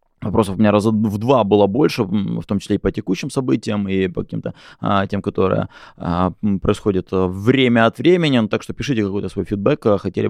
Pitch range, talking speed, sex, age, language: 95-110 Hz, 200 wpm, male, 20-39, Russian